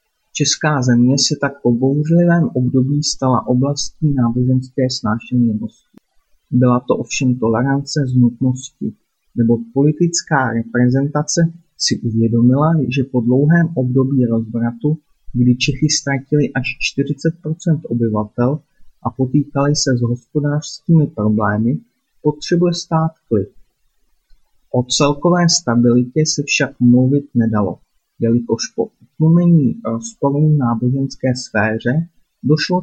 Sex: male